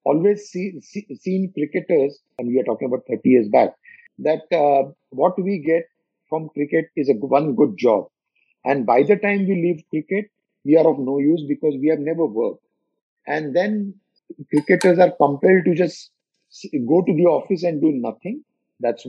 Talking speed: 180 wpm